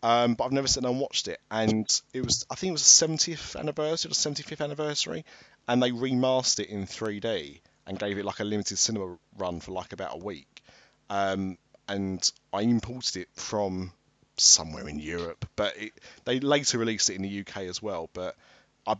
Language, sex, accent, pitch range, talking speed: English, male, British, 100-125 Hz, 205 wpm